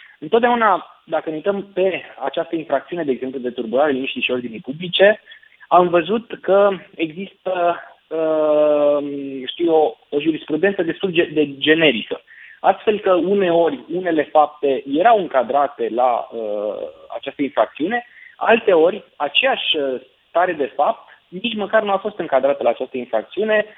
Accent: native